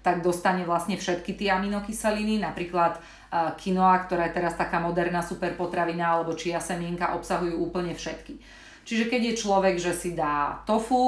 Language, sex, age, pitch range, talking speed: Slovak, female, 30-49, 165-185 Hz, 155 wpm